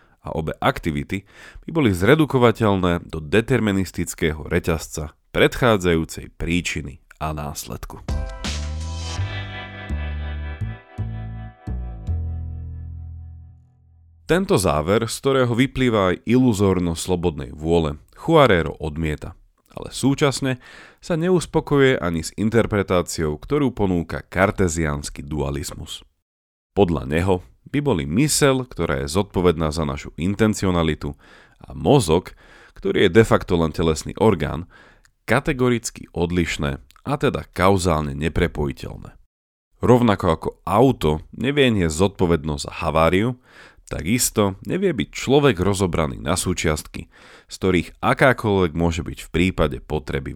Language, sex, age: Slovak, male, 40-59